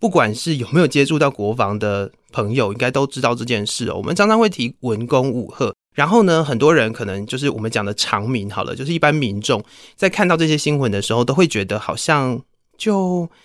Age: 20-39